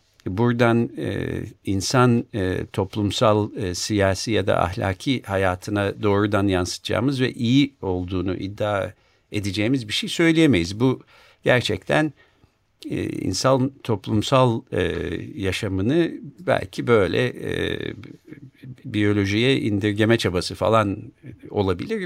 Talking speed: 100 wpm